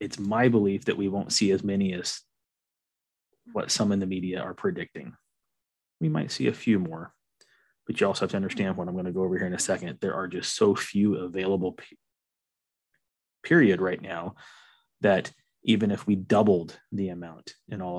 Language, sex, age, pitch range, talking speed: English, male, 30-49, 90-100 Hz, 185 wpm